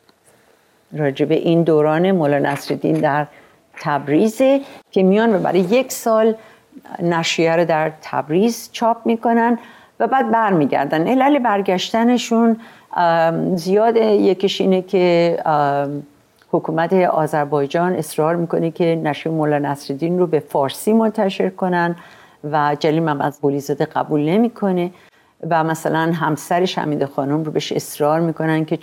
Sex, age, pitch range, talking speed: female, 50-69, 150-195 Hz, 120 wpm